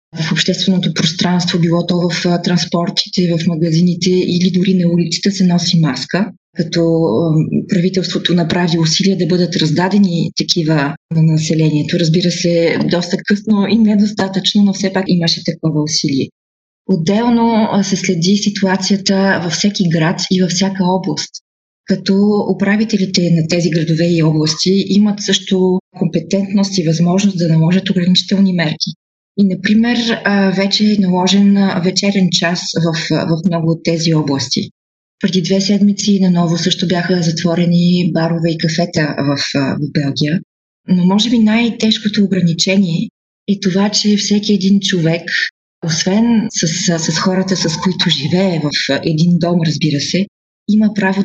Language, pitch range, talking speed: Bulgarian, 165-195 Hz, 135 wpm